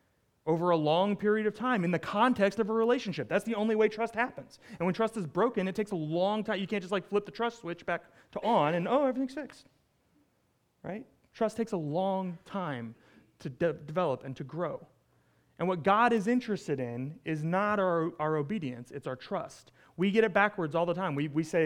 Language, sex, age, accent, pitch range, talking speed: English, male, 30-49, American, 155-215 Hz, 220 wpm